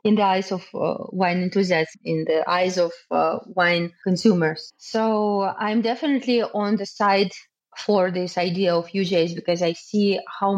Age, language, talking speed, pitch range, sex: 20-39, English, 165 wpm, 180-215 Hz, female